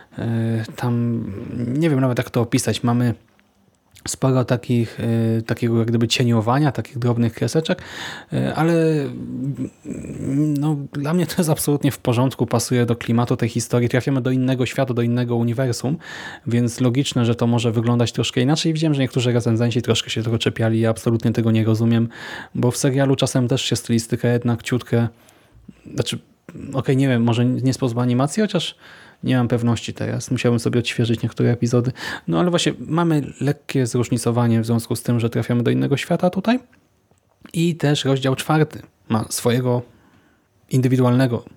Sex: male